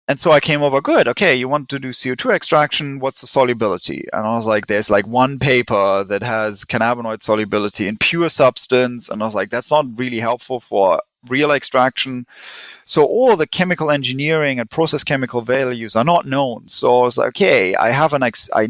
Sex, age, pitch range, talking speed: male, 30-49, 120-150 Hz, 205 wpm